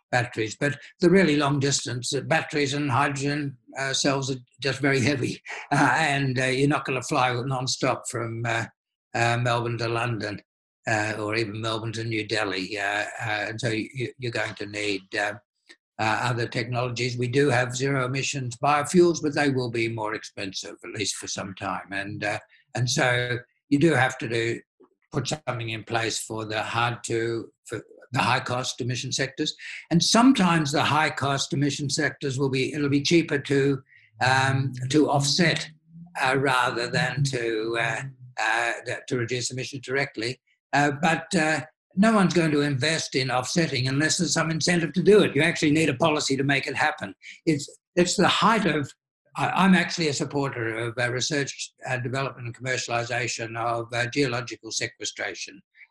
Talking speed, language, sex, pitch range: 175 wpm, English, male, 120-150 Hz